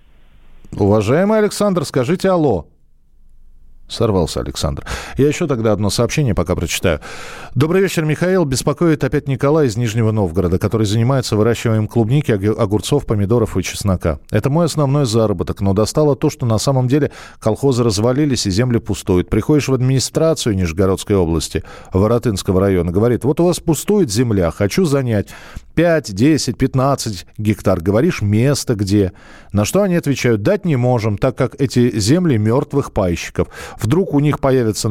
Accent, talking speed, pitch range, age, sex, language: native, 145 wpm, 100-145 Hz, 40-59, male, Russian